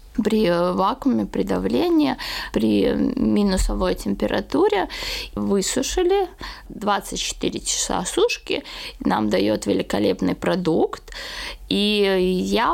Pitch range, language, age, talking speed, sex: 175-255 Hz, Russian, 20-39, 80 wpm, female